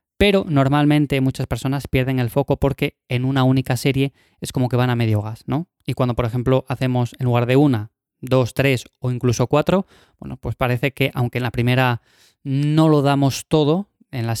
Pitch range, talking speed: 125-140 Hz, 200 wpm